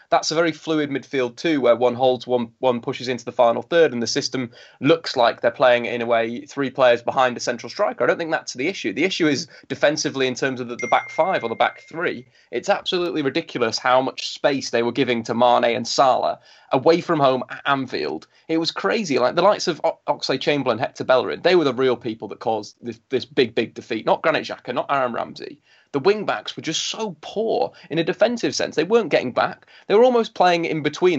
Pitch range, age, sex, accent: 125-160 Hz, 20-39, male, British